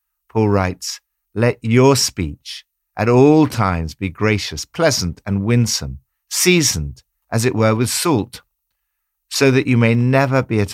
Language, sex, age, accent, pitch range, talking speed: English, male, 60-79, British, 90-130 Hz, 145 wpm